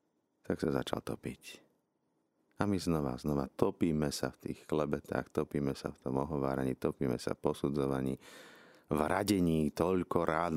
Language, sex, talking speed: Slovak, male, 150 wpm